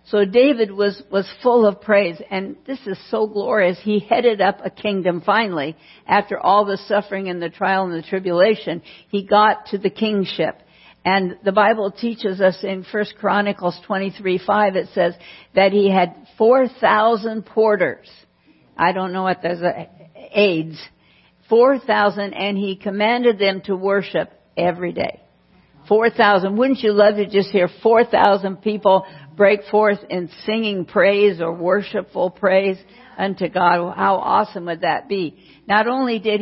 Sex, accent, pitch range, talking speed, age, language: female, American, 185-210 Hz, 155 wpm, 60-79, English